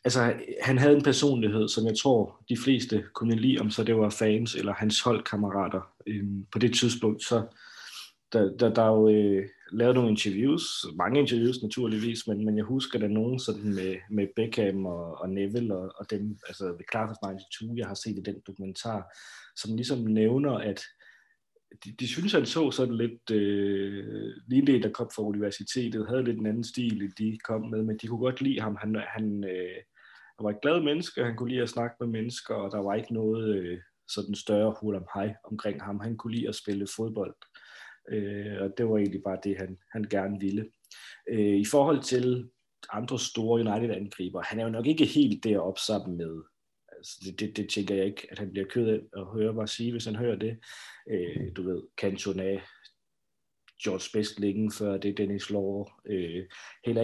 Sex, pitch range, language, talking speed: male, 100-115 Hz, Danish, 195 wpm